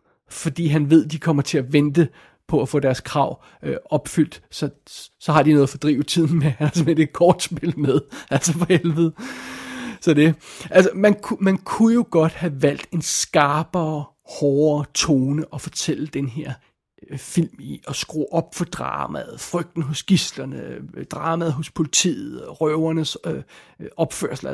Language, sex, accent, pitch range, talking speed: Danish, male, native, 150-175 Hz, 160 wpm